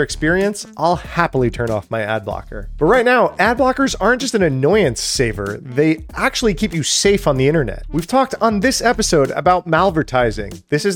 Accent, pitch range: American, 125-170 Hz